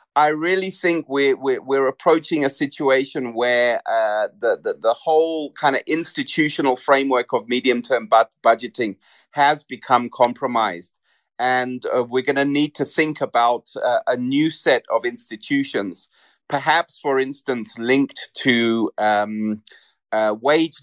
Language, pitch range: English, 120-155 Hz